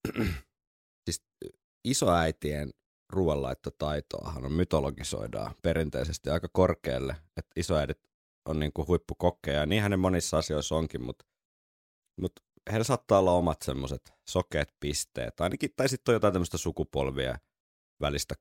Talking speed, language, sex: 115 wpm, Finnish, male